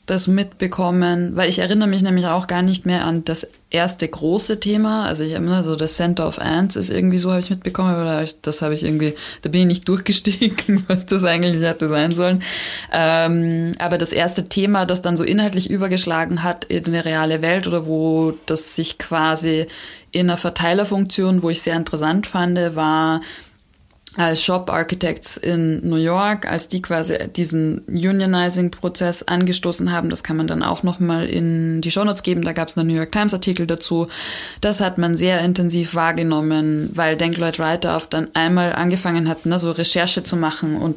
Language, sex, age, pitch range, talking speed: German, female, 20-39, 160-180 Hz, 190 wpm